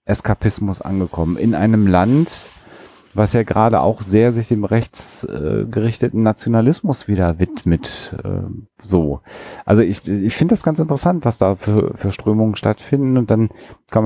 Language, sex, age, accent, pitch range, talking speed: German, male, 40-59, German, 90-110 Hz, 140 wpm